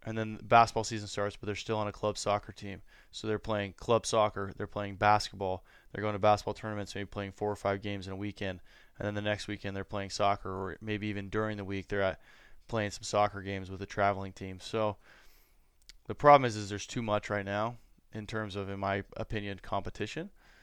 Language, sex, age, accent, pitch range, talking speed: English, male, 20-39, American, 100-110 Hz, 220 wpm